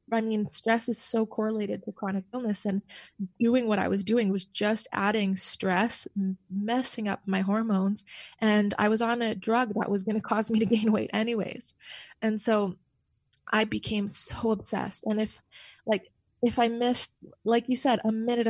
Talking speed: 180 wpm